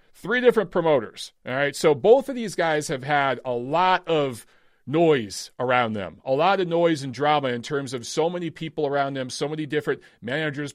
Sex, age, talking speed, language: male, 40-59, 200 wpm, English